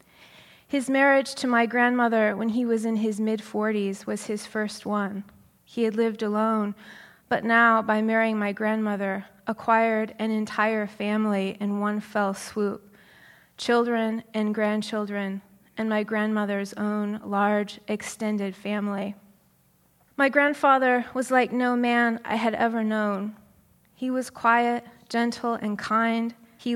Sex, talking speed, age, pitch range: female, 135 wpm, 20-39, 205-230 Hz